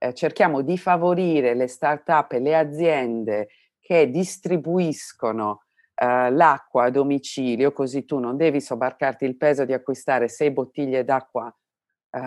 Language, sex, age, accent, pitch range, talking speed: Italian, female, 40-59, native, 125-150 Hz, 130 wpm